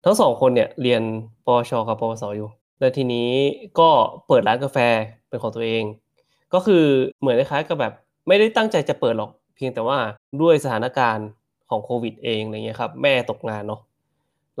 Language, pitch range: Thai, 110-140 Hz